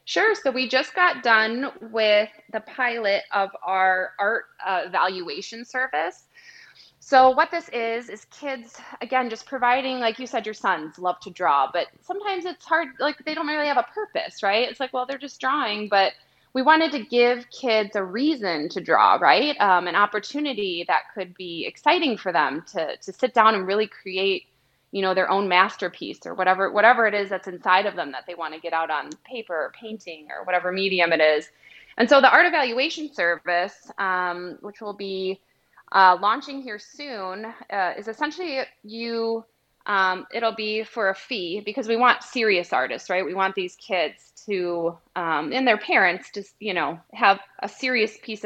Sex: female